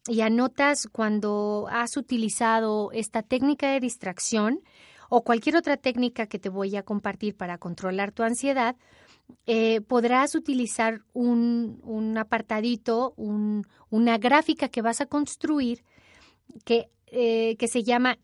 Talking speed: 130 wpm